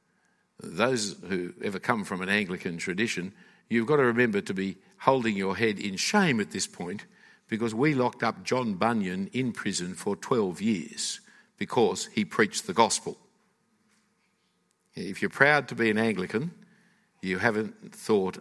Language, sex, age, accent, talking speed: English, male, 60-79, Australian, 155 wpm